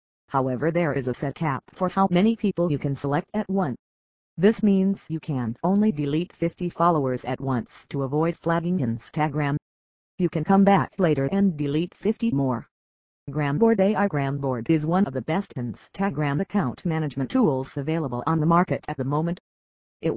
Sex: female